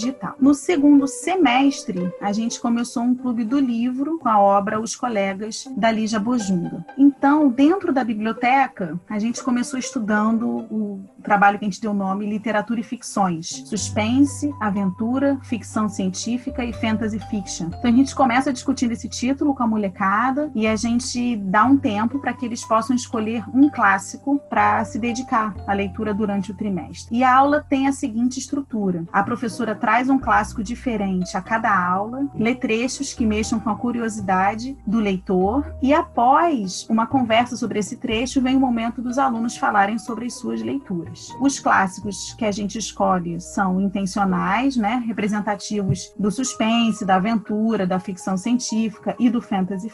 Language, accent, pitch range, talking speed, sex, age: Portuguese, Brazilian, 205-255 Hz, 165 wpm, female, 30-49